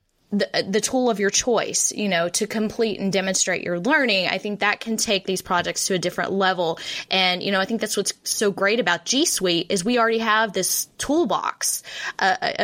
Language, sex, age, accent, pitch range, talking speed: English, female, 10-29, American, 175-215 Hz, 210 wpm